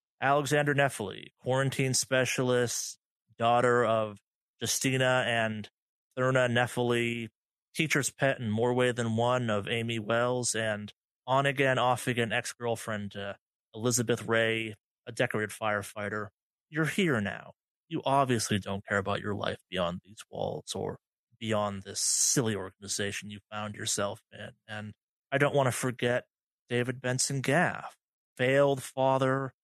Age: 30-49